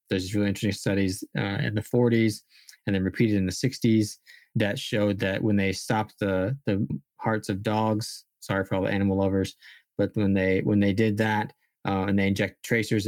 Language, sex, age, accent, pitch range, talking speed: English, male, 20-39, American, 95-110 Hz, 195 wpm